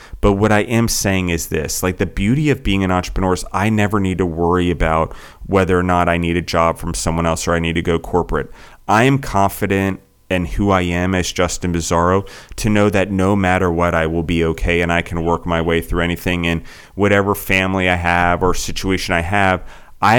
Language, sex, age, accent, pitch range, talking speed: English, male, 30-49, American, 85-95 Hz, 225 wpm